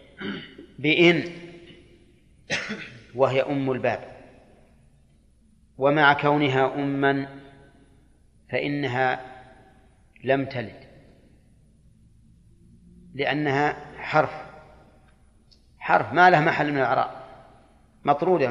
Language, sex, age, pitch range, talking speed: Arabic, male, 40-59, 120-145 Hz, 60 wpm